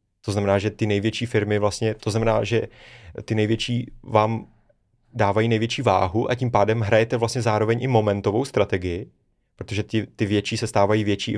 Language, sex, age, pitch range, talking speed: Czech, male, 30-49, 105-125 Hz, 175 wpm